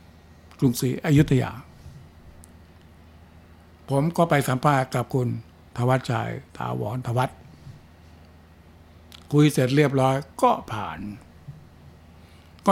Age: 60-79